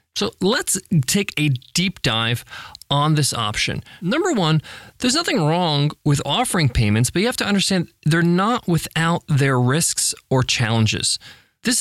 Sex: male